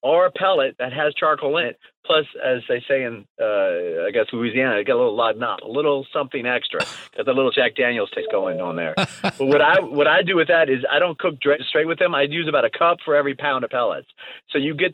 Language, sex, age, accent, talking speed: English, male, 40-59, American, 260 wpm